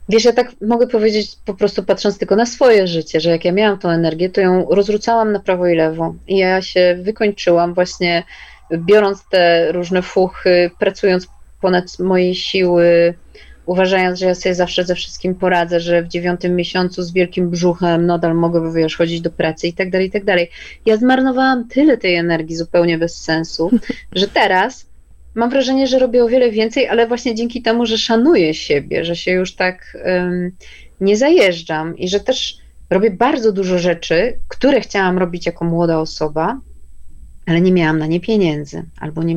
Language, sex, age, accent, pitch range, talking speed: Polish, female, 20-39, native, 170-205 Hz, 175 wpm